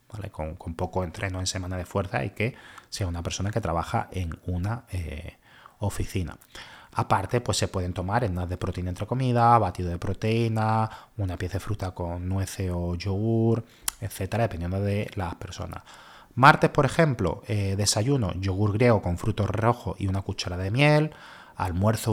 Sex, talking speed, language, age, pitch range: male, 165 wpm, Spanish, 30-49, 95-115 Hz